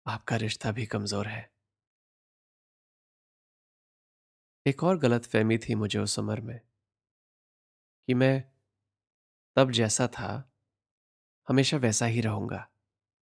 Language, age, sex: Hindi, 20-39, male